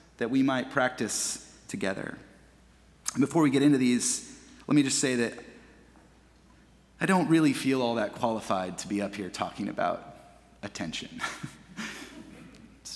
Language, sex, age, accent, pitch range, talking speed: English, male, 30-49, American, 110-150 Hz, 140 wpm